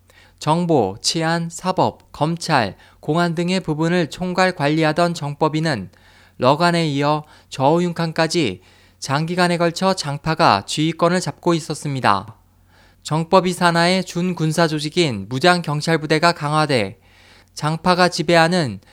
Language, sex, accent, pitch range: Korean, male, native, 115-175 Hz